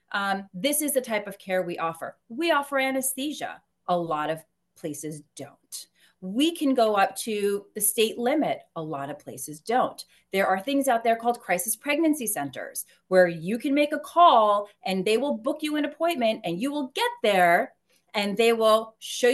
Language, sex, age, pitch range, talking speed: English, female, 30-49, 195-275 Hz, 190 wpm